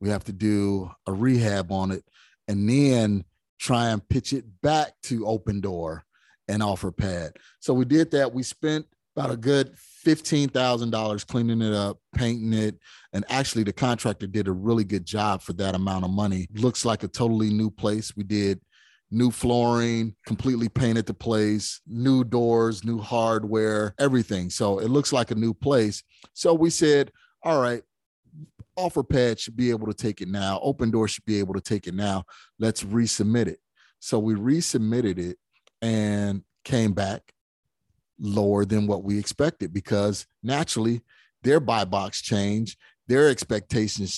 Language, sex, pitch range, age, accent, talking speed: English, male, 100-120 Hz, 30-49, American, 165 wpm